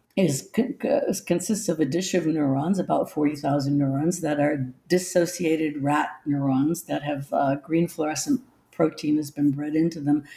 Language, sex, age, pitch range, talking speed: English, female, 60-79, 150-205 Hz, 150 wpm